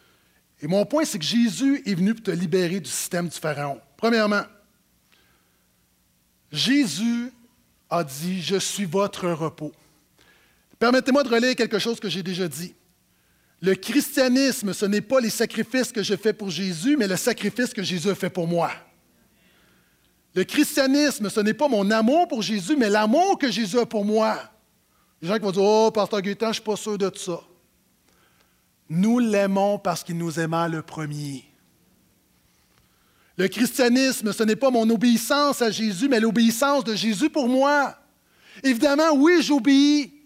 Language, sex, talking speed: French, male, 170 wpm